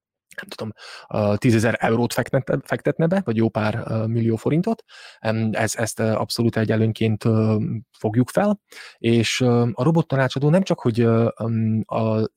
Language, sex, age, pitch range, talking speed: Hungarian, male, 20-39, 110-125 Hz, 110 wpm